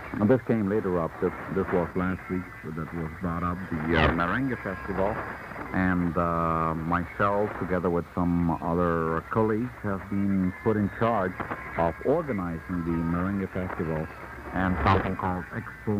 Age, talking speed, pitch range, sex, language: 60-79, 150 wpm, 90-110 Hz, male, Italian